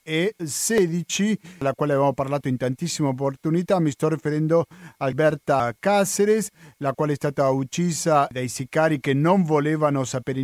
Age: 40-59